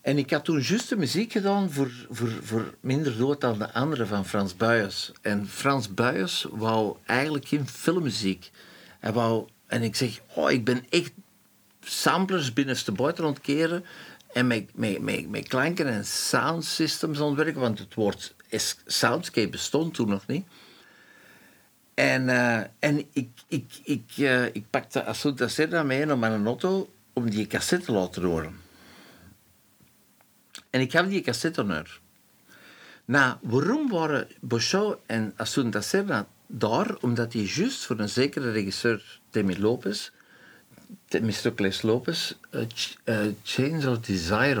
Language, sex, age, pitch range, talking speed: Dutch, male, 60-79, 110-145 Hz, 145 wpm